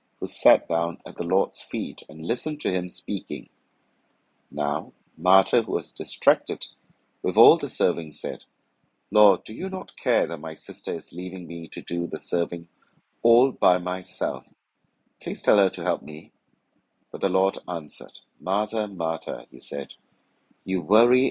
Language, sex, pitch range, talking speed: English, male, 85-110 Hz, 160 wpm